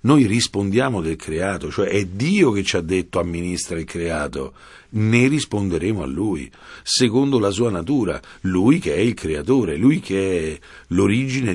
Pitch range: 85-100 Hz